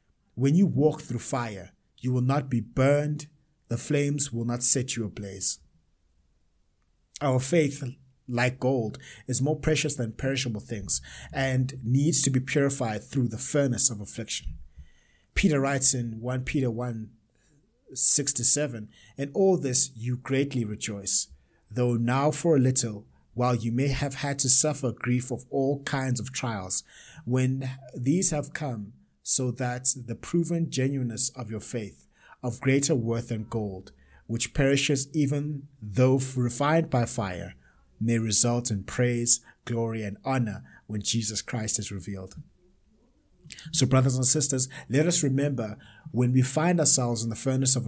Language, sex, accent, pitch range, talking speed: English, male, South African, 110-140 Hz, 150 wpm